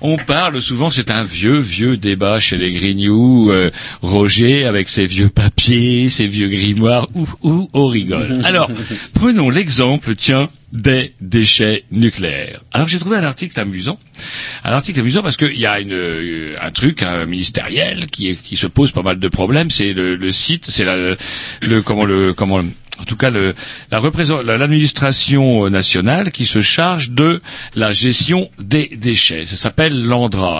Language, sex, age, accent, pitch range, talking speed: French, male, 60-79, French, 100-145 Hz, 170 wpm